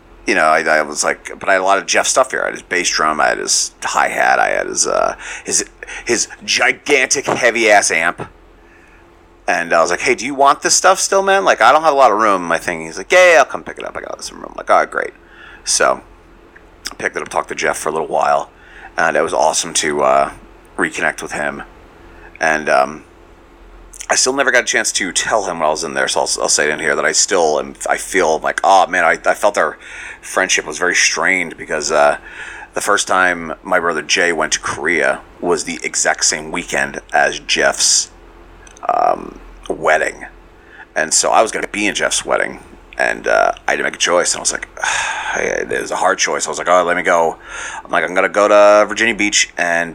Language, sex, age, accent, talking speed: English, male, 30-49, American, 240 wpm